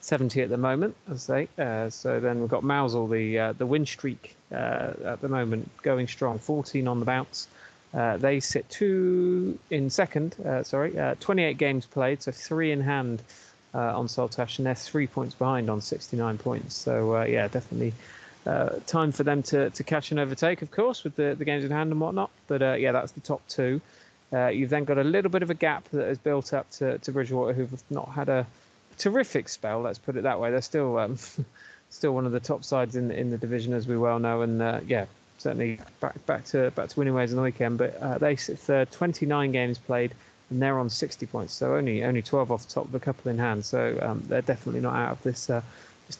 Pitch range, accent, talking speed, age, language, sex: 120-150 Hz, British, 235 wpm, 30-49, English, male